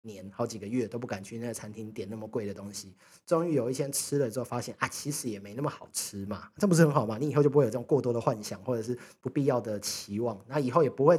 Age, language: 30-49, Chinese